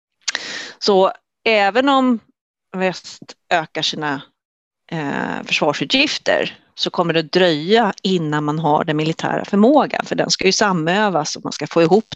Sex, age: female, 30-49